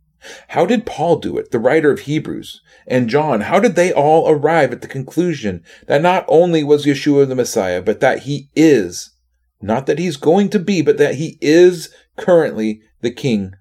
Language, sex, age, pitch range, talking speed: English, male, 30-49, 105-150 Hz, 190 wpm